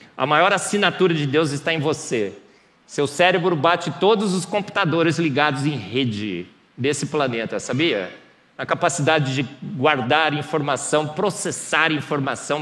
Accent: Brazilian